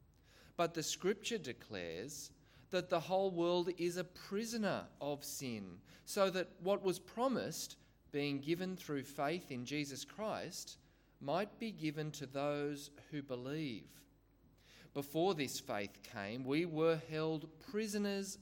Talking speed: 130 wpm